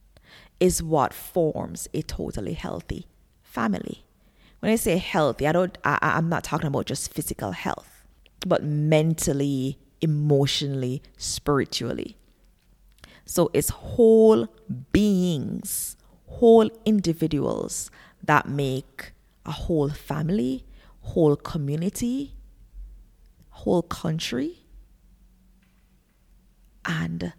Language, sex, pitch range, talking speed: English, female, 140-185 Hz, 90 wpm